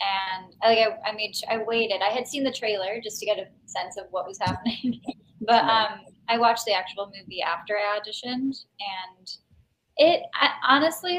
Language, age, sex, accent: English, 10-29, female, American